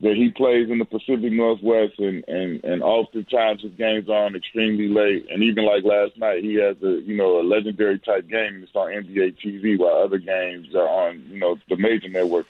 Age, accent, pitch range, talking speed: 30-49, American, 105-135 Hz, 215 wpm